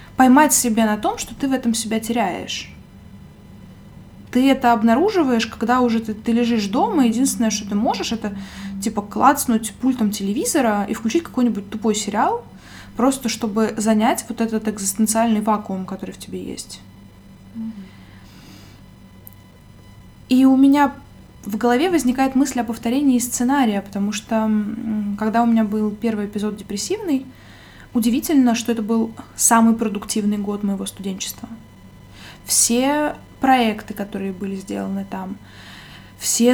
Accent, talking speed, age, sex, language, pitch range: native, 130 wpm, 20-39, female, Russian, 200-240 Hz